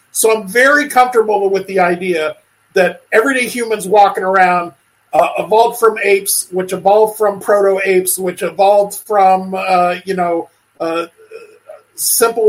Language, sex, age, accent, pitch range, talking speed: English, male, 50-69, American, 185-230 Hz, 135 wpm